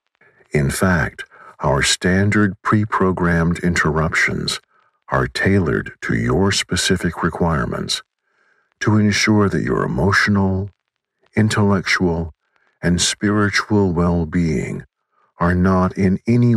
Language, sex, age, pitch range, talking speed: English, male, 60-79, 85-100 Hz, 90 wpm